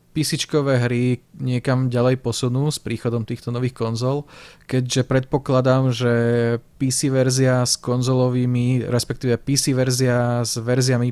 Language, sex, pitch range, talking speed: Slovak, male, 120-135 Hz, 120 wpm